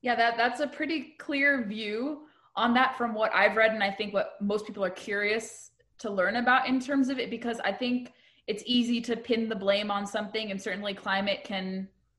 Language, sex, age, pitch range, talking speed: English, female, 20-39, 190-225 Hz, 210 wpm